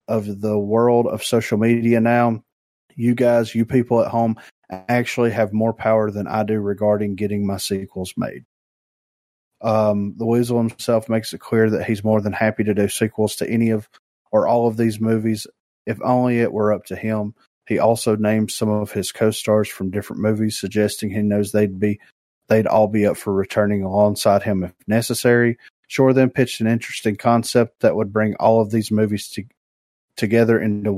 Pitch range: 105-120 Hz